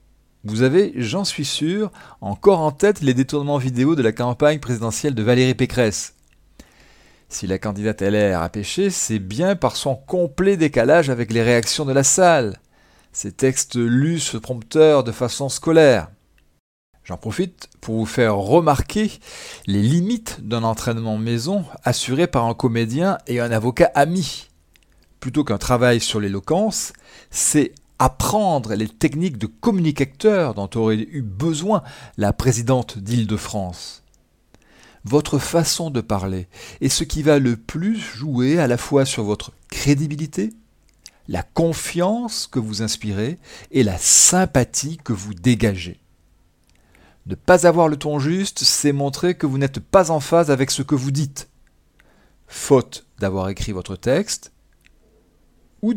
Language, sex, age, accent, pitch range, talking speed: French, male, 40-59, French, 105-155 Hz, 145 wpm